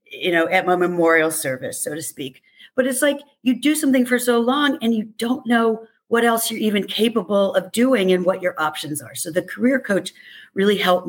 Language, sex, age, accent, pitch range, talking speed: English, female, 50-69, American, 160-215 Hz, 215 wpm